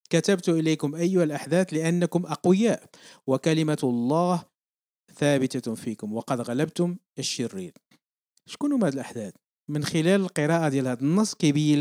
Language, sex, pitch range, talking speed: Arabic, male, 125-165 Hz, 120 wpm